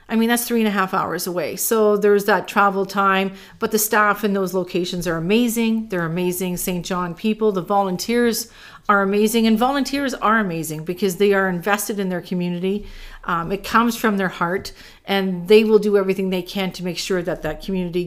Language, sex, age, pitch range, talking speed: English, female, 40-59, 185-215 Hz, 205 wpm